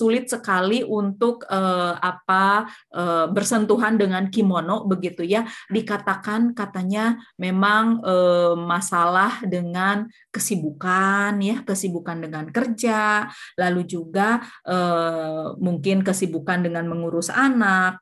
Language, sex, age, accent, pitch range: Japanese, female, 20-39, Indonesian, 185-235 Hz